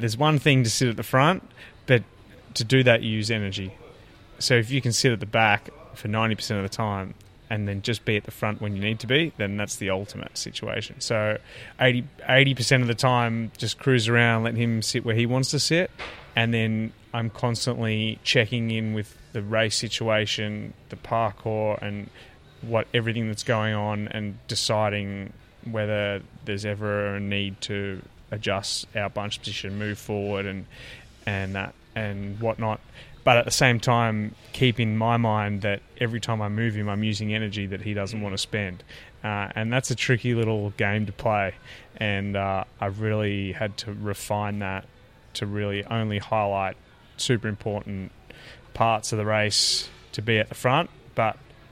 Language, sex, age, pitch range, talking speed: English, male, 20-39, 105-120 Hz, 180 wpm